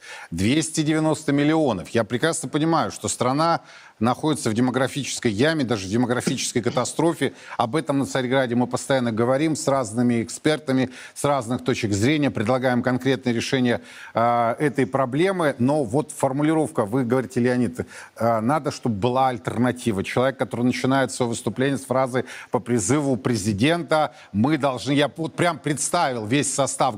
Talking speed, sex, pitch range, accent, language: 140 wpm, male, 120-150 Hz, native, Russian